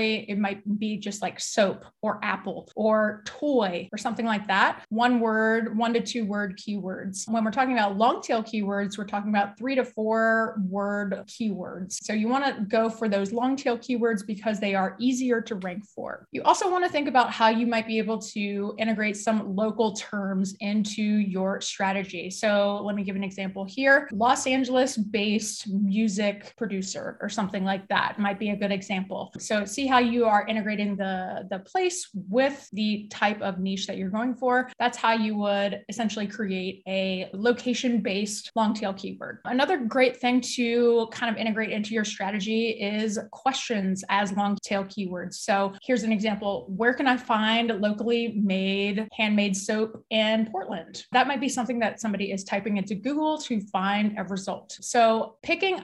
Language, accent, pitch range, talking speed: English, American, 200-235 Hz, 180 wpm